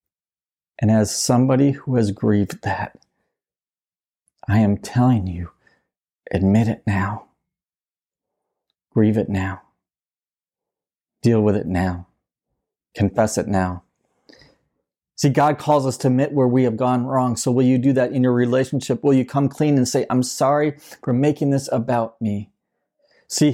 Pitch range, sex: 110-140 Hz, male